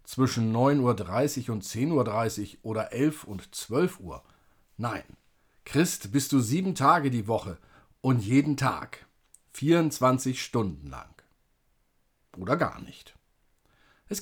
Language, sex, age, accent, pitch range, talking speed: German, male, 40-59, German, 115-165 Hz, 120 wpm